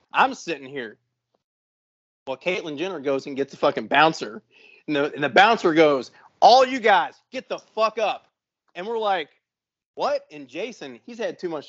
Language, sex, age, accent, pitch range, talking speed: English, male, 30-49, American, 155-215 Hz, 175 wpm